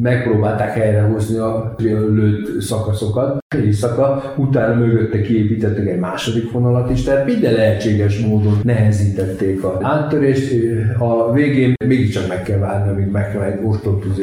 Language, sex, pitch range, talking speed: Hungarian, male, 100-120 Hz, 125 wpm